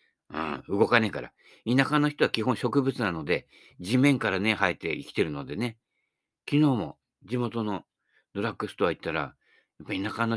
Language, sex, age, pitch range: Japanese, male, 60-79, 105-155 Hz